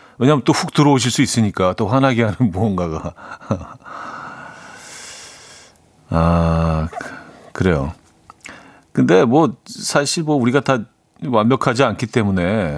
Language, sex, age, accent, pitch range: Korean, male, 40-59, native, 105-140 Hz